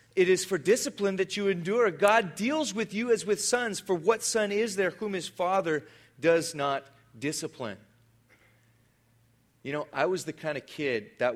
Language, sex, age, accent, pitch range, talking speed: English, male, 30-49, American, 120-170 Hz, 180 wpm